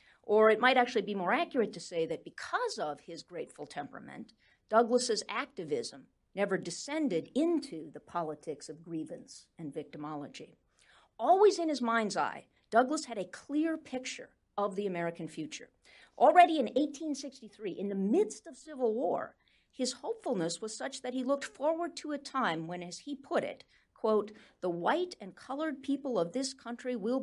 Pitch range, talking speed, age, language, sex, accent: 185-285 Hz, 165 wpm, 50-69, English, female, American